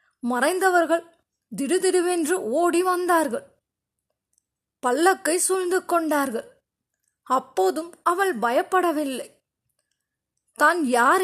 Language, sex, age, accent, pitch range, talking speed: Tamil, female, 20-39, native, 320-365 Hz, 65 wpm